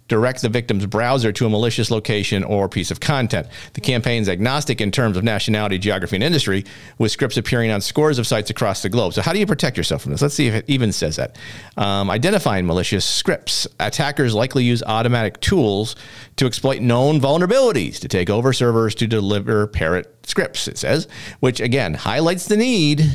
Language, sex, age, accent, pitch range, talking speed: English, male, 40-59, American, 100-135 Hz, 195 wpm